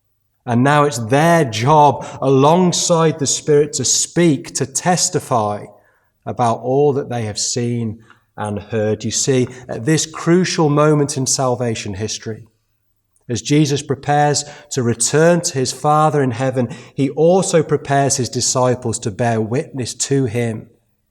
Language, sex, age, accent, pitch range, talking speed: English, male, 30-49, British, 110-150 Hz, 140 wpm